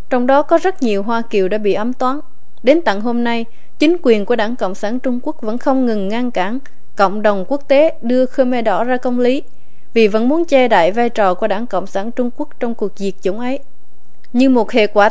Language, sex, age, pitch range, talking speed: Vietnamese, female, 20-39, 215-265 Hz, 240 wpm